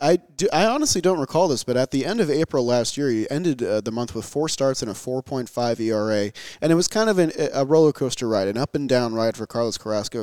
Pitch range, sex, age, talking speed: 115-140 Hz, male, 30-49, 265 wpm